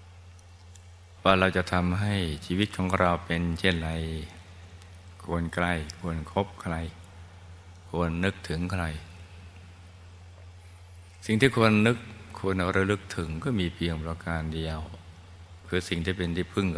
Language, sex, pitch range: Thai, male, 85-90 Hz